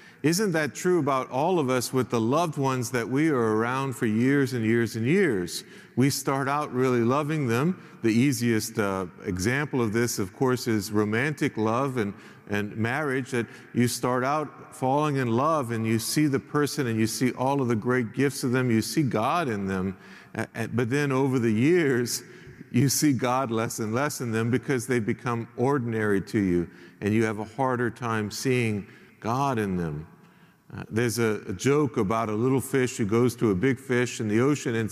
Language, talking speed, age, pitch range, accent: English, 200 wpm, 50-69, 115-145 Hz, American